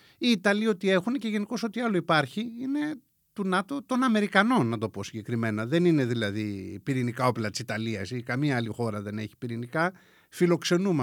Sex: male